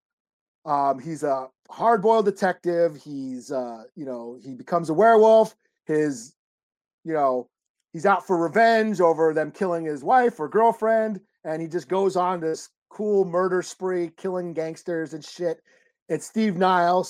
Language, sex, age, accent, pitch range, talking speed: English, male, 30-49, American, 155-205 Hz, 155 wpm